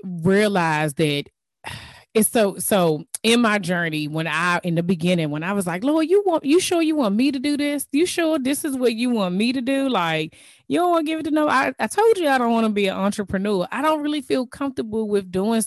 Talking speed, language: 250 wpm, English